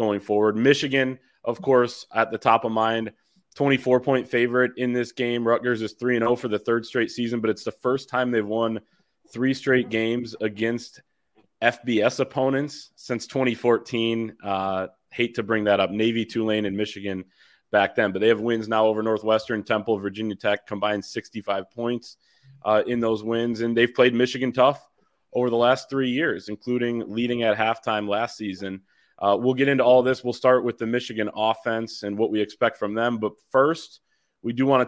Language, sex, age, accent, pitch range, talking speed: English, male, 20-39, American, 105-125 Hz, 190 wpm